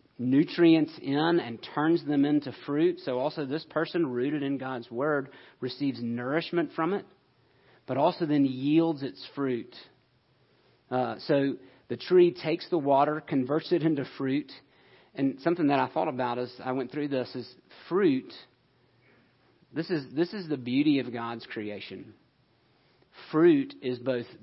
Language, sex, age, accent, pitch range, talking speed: English, male, 40-59, American, 130-160 Hz, 150 wpm